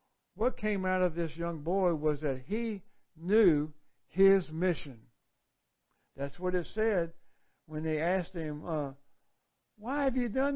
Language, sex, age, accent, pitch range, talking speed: English, male, 60-79, American, 145-180 Hz, 150 wpm